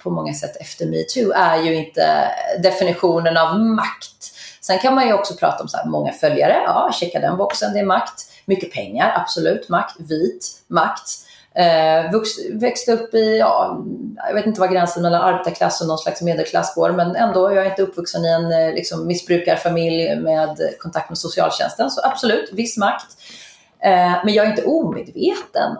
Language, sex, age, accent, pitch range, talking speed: Swedish, female, 30-49, native, 160-200 Hz, 175 wpm